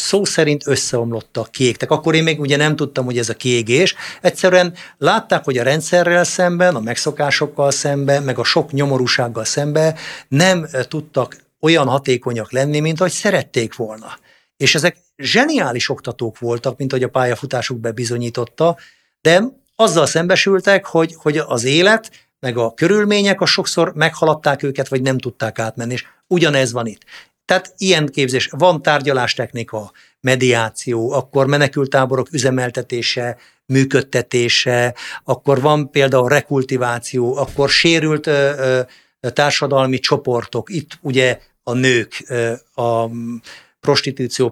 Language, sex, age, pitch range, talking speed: Hungarian, male, 50-69, 120-155 Hz, 130 wpm